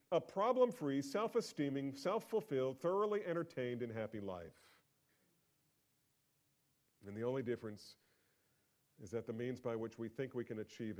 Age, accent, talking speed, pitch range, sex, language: 40-59, American, 130 wpm, 110-155 Hz, male, English